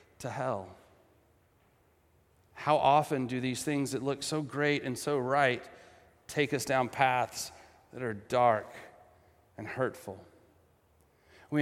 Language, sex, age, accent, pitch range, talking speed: English, male, 30-49, American, 120-165 Hz, 125 wpm